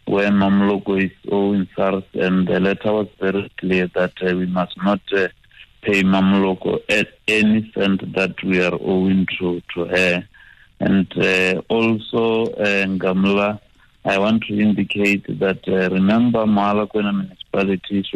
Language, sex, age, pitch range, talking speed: English, male, 60-79, 95-105 Hz, 150 wpm